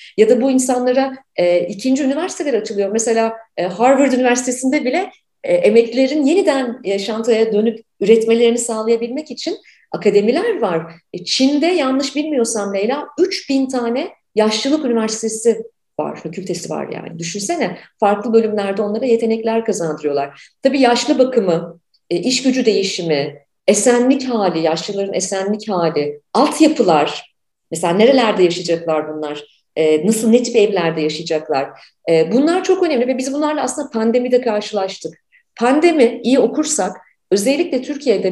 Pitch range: 200-275 Hz